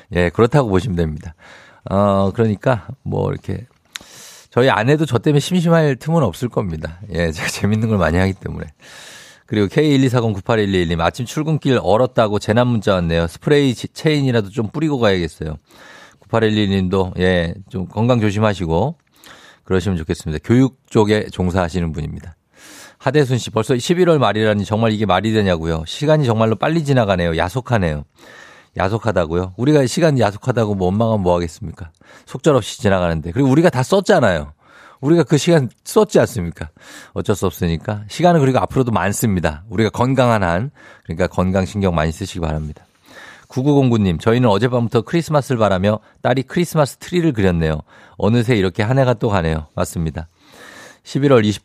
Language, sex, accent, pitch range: Korean, male, native, 90-135 Hz